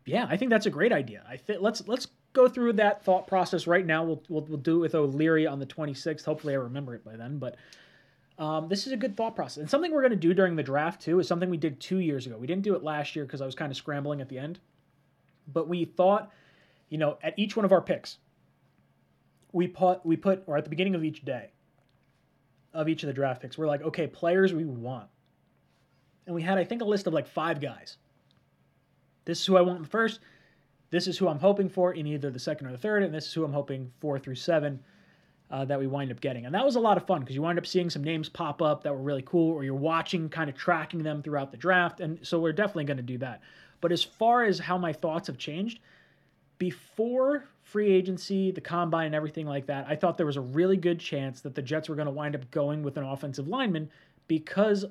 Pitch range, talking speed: 145-185 Hz, 255 wpm